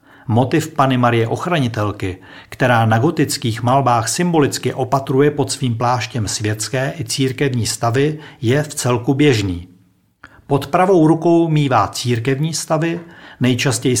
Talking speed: 120 wpm